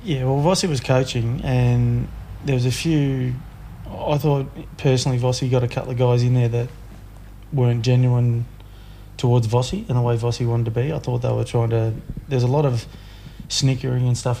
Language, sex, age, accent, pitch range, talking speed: English, male, 20-39, Australian, 115-130 Hz, 190 wpm